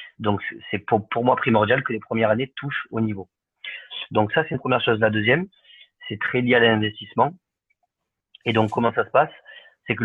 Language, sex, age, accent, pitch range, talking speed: French, male, 30-49, French, 105-120 Hz, 205 wpm